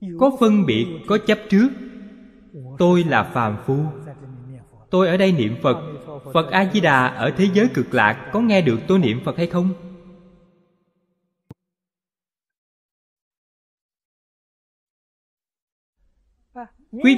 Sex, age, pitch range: male, 20-39, 145-205 Hz